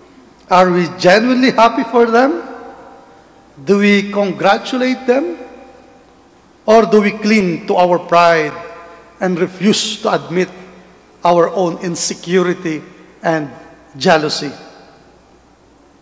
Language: English